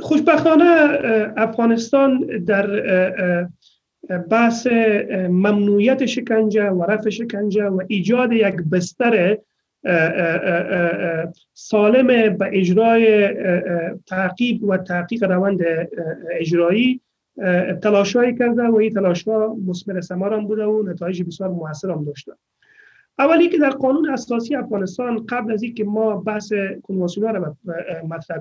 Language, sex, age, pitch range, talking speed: Persian, male, 30-49, 185-240 Hz, 100 wpm